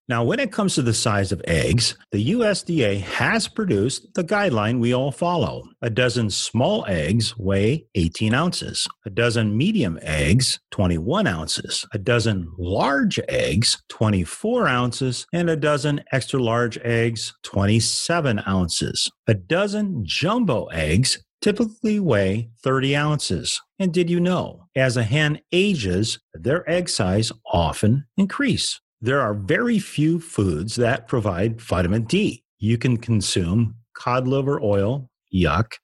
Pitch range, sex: 110-155 Hz, male